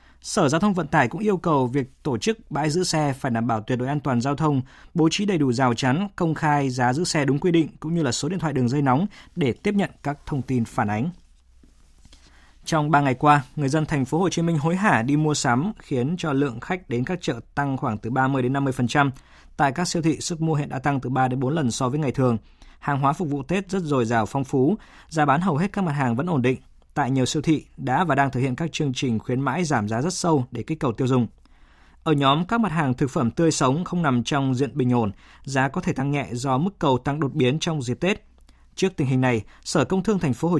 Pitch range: 125-165 Hz